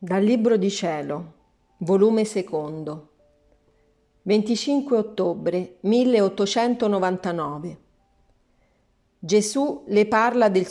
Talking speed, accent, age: 75 wpm, native, 40-59